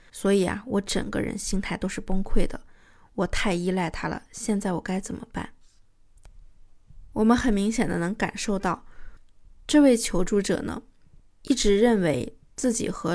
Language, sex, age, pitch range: Chinese, female, 20-39, 180-225 Hz